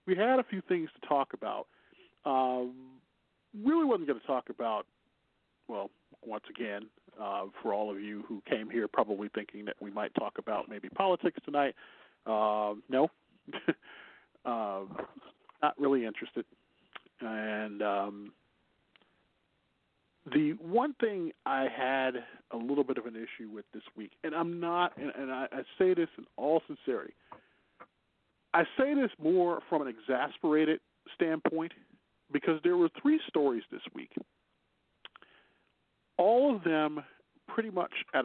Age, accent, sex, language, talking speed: 40-59, American, male, English, 145 wpm